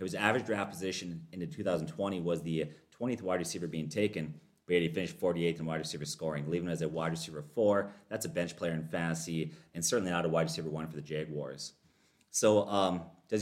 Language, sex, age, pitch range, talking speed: English, male, 30-49, 80-100 Hz, 210 wpm